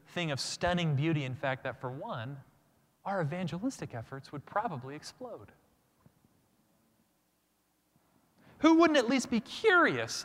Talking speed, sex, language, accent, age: 125 wpm, male, English, American, 30-49